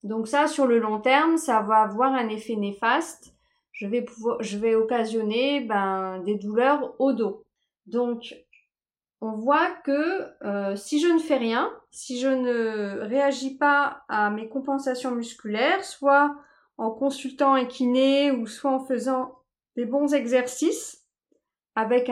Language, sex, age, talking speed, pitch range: French, female, 30-49, 150 wpm, 225-285 Hz